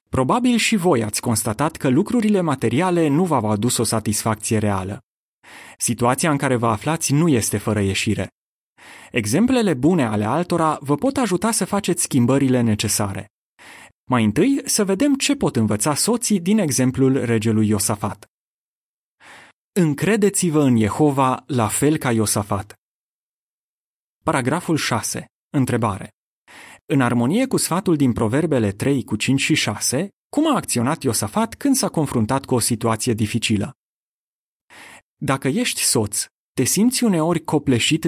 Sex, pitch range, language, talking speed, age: male, 110-165 Hz, Romanian, 135 wpm, 30-49